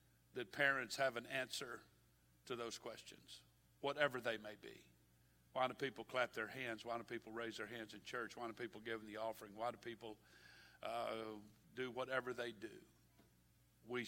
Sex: male